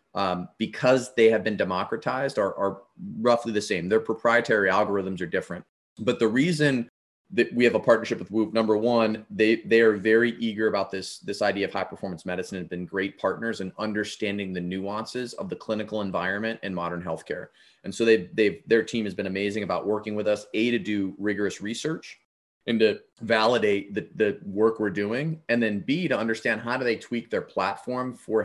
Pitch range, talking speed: 100-115 Hz, 200 wpm